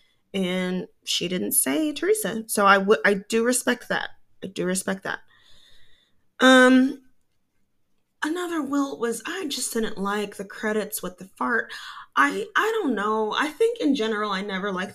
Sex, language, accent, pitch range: female, English, American, 195-245 Hz